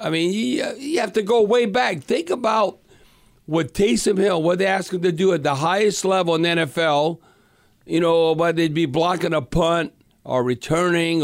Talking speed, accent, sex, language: 200 wpm, American, male, English